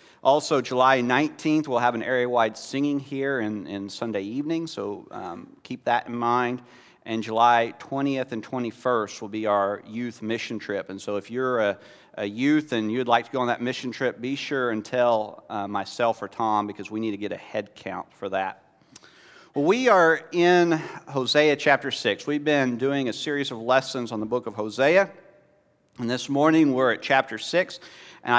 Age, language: 40-59, English